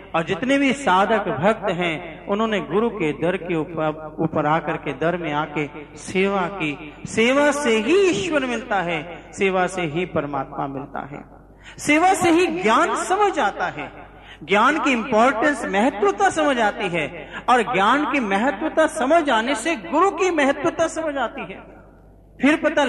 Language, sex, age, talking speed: Hindi, male, 40-59, 155 wpm